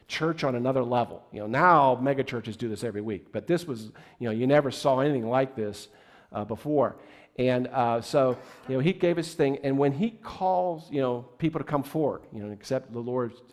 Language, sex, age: English, male, 50-69